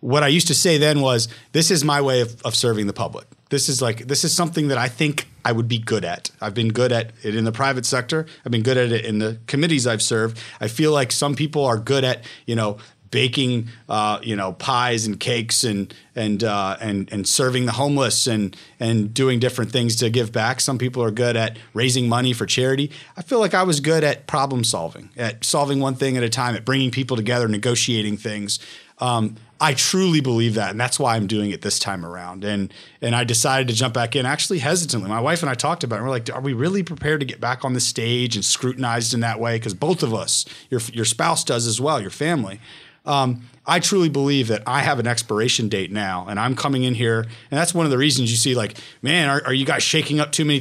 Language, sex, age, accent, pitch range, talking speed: English, male, 30-49, American, 115-145 Hz, 245 wpm